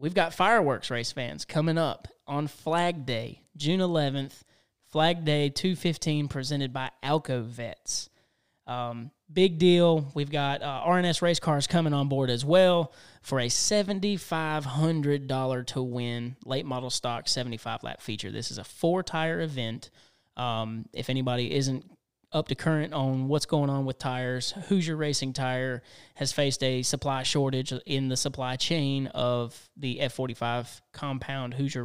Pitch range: 125-150 Hz